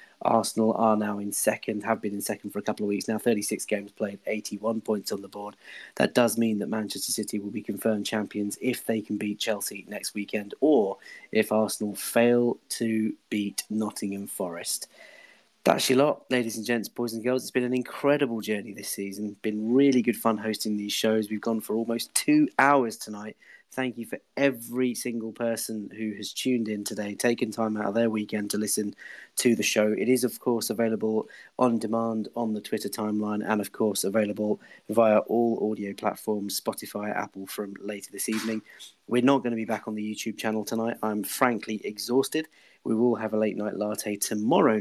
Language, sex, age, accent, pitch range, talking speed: English, male, 30-49, British, 105-115 Hz, 195 wpm